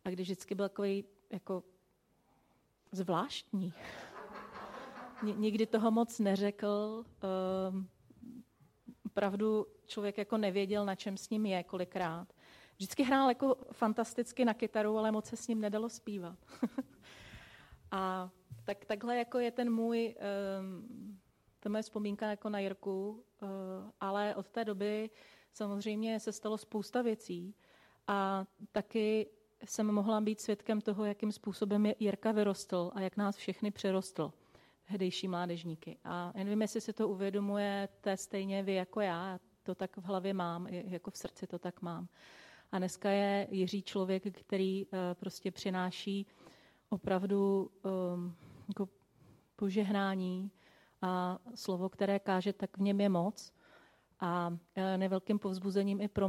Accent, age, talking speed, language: native, 30-49, 135 wpm, Czech